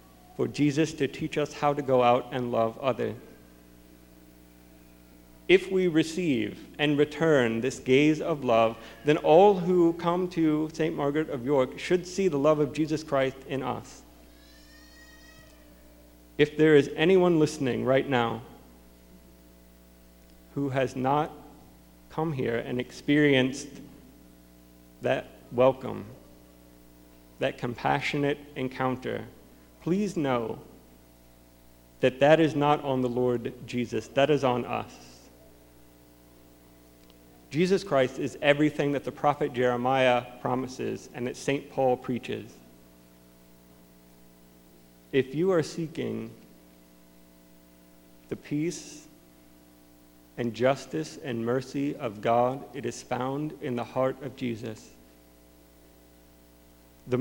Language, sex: English, male